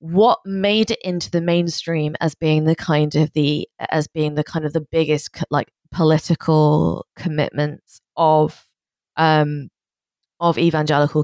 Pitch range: 150-175 Hz